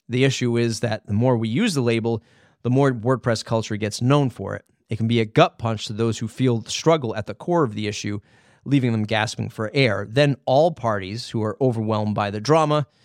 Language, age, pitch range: English, 30-49, 110-135 Hz